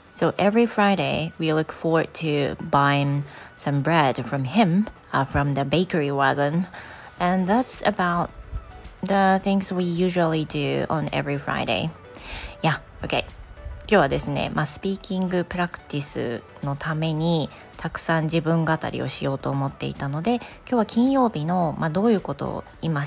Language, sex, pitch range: Japanese, female, 145-185 Hz